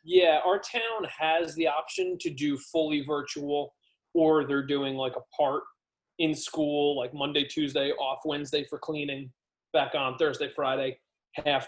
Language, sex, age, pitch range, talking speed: English, male, 30-49, 125-155 Hz, 155 wpm